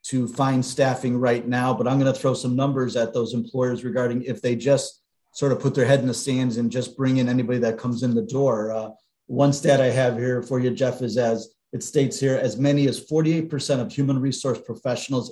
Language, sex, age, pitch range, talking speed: English, male, 40-59, 115-135 Hz, 225 wpm